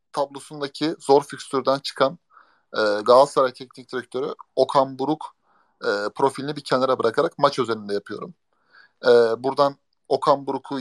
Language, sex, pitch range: Turkish, male, 130-190 Hz